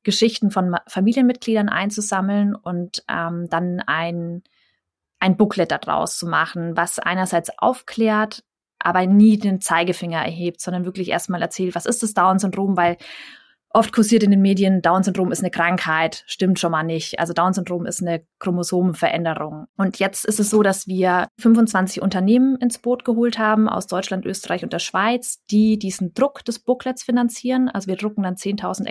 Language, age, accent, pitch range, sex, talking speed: German, 20-39, German, 180-210 Hz, female, 160 wpm